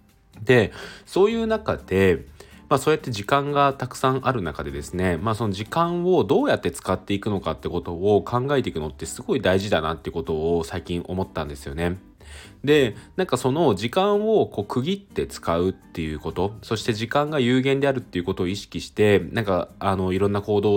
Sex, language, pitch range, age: male, Japanese, 85-125 Hz, 20-39